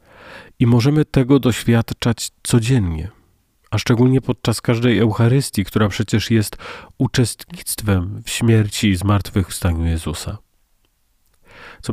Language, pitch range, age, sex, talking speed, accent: Polish, 100-120 Hz, 40-59, male, 100 wpm, native